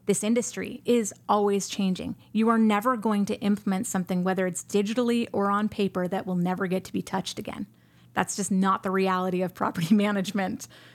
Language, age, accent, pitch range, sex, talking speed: English, 30-49, American, 190-225 Hz, female, 185 wpm